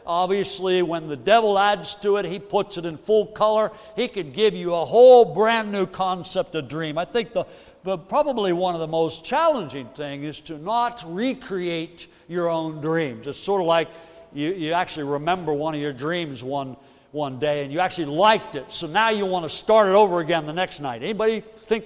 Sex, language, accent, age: male, English, American, 60-79